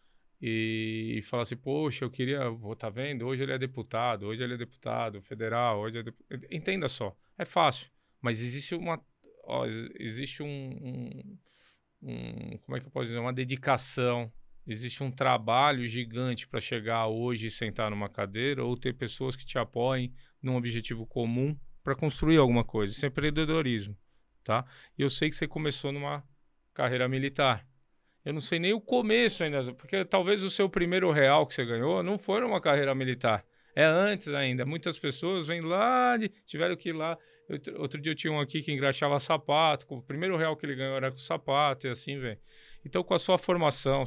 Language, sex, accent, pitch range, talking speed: Portuguese, male, Brazilian, 125-155 Hz, 185 wpm